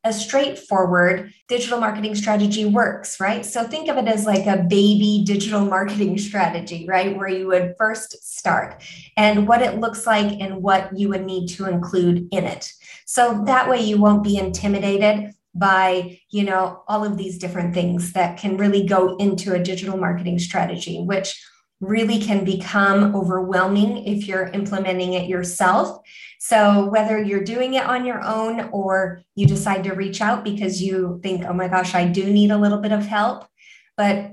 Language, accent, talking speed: English, American, 175 wpm